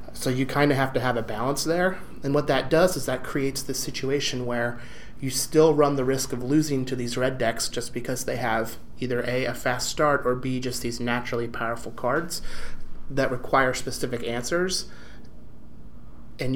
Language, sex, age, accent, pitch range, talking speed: English, male, 30-49, American, 120-135 Hz, 190 wpm